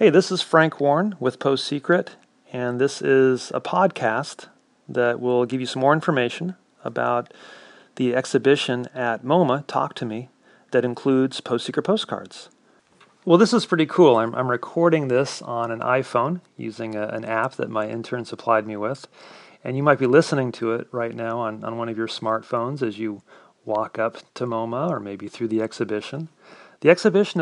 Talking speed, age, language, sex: 175 wpm, 40-59, English, male